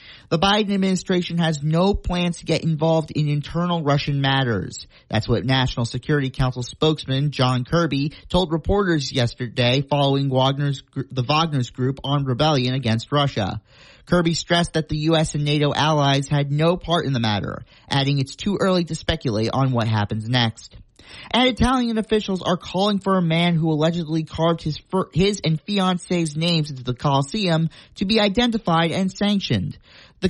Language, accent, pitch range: English, American, 135-175 Hz